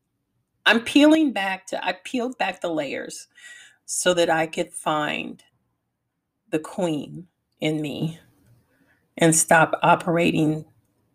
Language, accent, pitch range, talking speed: English, American, 140-185 Hz, 115 wpm